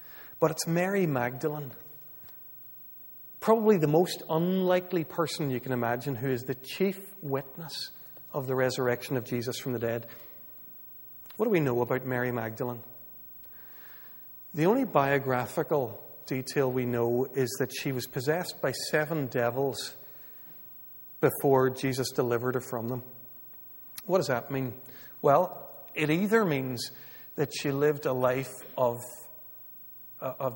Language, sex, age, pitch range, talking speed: English, male, 40-59, 125-155 Hz, 130 wpm